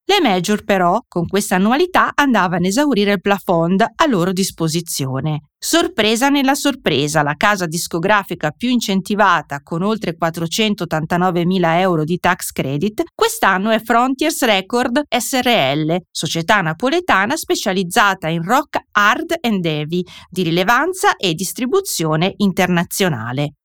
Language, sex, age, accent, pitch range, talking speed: Italian, female, 30-49, native, 175-255 Hz, 120 wpm